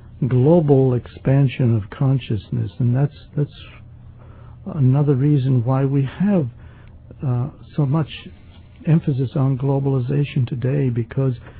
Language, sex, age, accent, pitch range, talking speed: English, male, 60-79, American, 115-135 Hz, 105 wpm